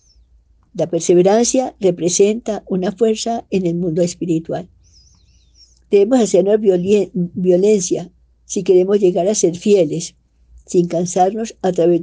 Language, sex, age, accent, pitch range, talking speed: Spanish, female, 60-79, American, 165-195 Hz, 115 wpm